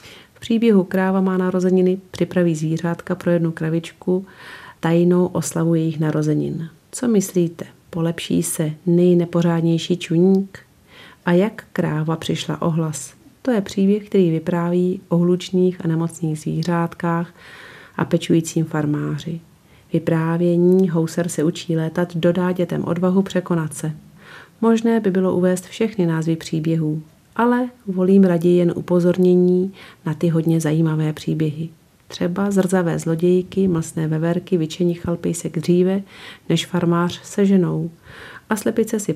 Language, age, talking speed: Czech, 40-59, 125 wpm